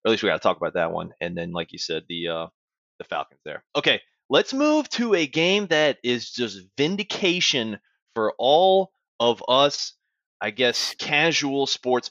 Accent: American